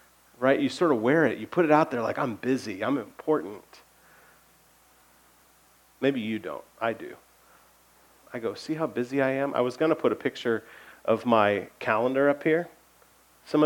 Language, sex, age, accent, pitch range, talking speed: English, male, 40-59, American, 120-175 Hz, 180 wpm